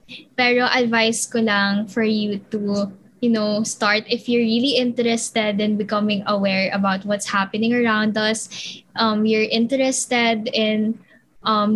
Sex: female